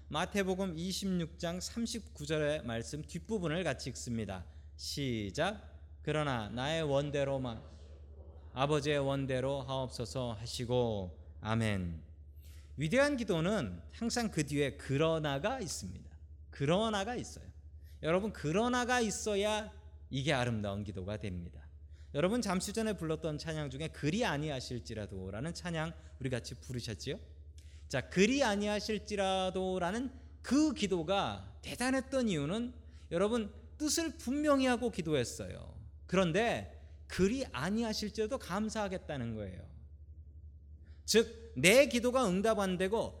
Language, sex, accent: Korean, male, native